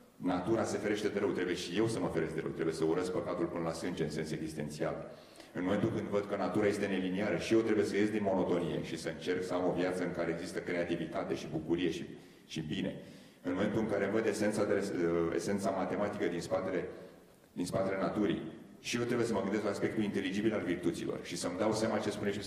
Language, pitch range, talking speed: Romanian, 80-105 Hz, 230 wpm